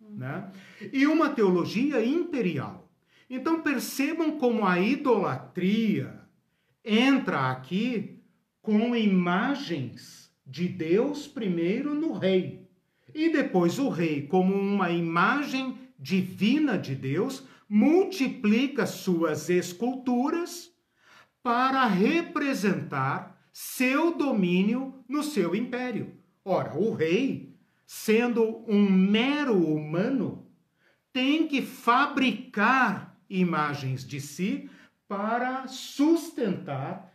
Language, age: Portuguese, 50-69